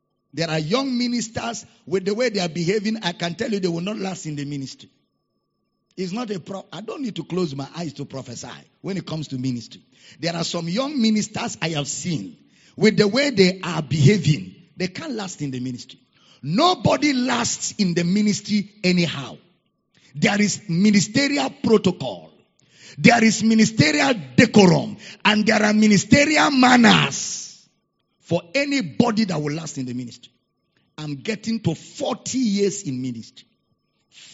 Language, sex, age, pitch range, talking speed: English, male, 50-69, 155-220 Hz, 165 wpm